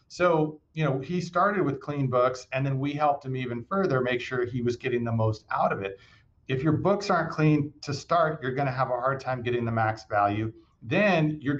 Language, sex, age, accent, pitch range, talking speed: English, male, 40-59, American, 125-160 Hz, 235 wpm